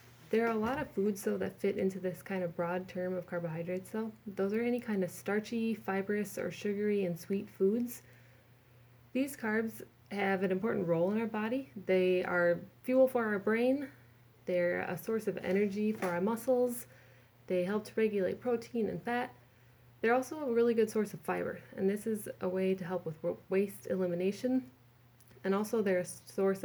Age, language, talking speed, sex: 20-39, English, 185 wpm, female